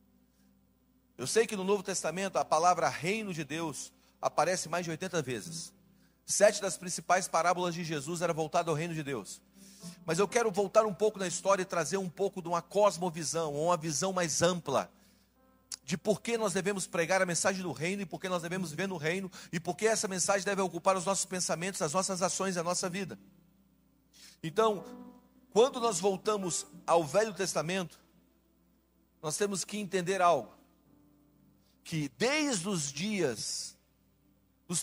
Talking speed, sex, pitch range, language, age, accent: 170 wpm, male, 165-200 Hz, Portuguese, 40-59, Brazilian